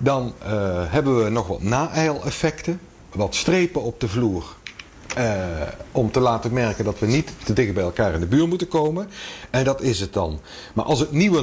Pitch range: 105-150 Hz